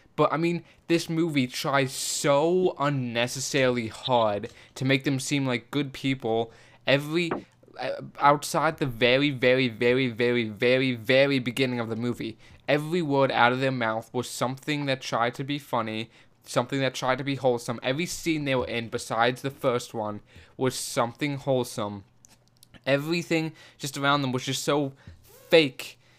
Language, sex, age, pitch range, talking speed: English, male, 10-29, 120-140 Hz, 155 wpm